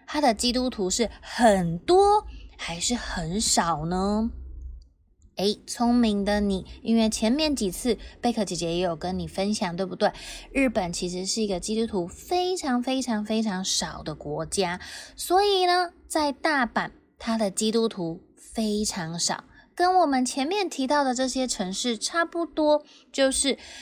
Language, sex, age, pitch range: Chinese, female, 20-39, 190-275 Hz